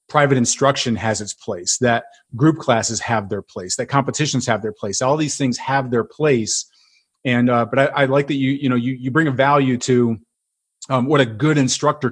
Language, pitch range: English, 115-145 Hz